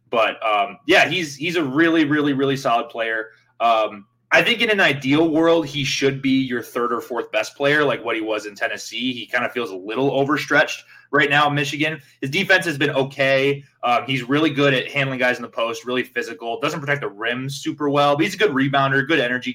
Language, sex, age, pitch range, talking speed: English, male, 20-39, 120-150 Hz, 225 wpm